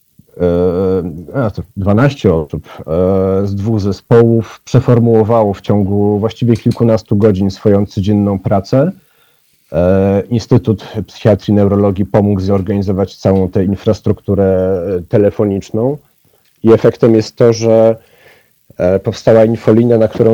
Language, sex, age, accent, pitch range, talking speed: Polish, male, 40-59, native, 95-115 Hz, 105 wpm